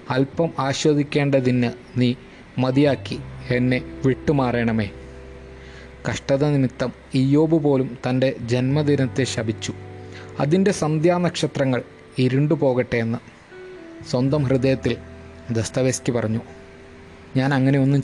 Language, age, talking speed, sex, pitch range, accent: Malayalam, 20-39, 75 wpm, male, 115-150 Hz, native